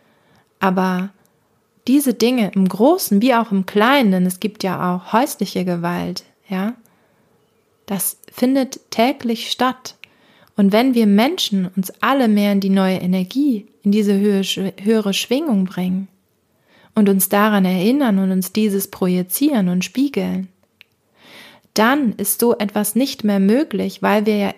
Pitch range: 195-235 Hz